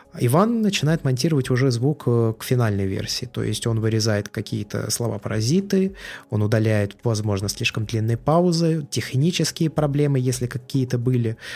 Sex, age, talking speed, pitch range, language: male, 20-39, 130 wpm, 115-135 Hz, Russian